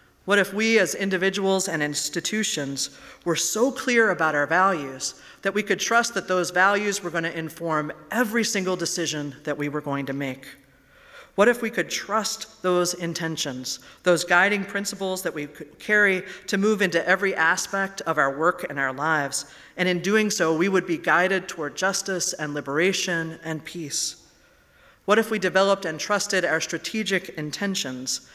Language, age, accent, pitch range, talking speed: English, 40-59, American, 155-195 Hz, 170 wpm